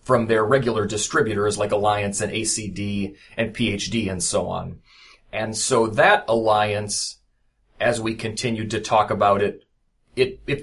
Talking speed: 145 wpm